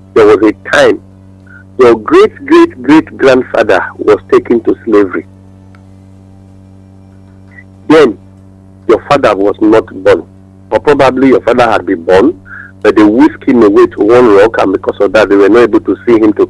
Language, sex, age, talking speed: English, male, 50-69, 155 wpm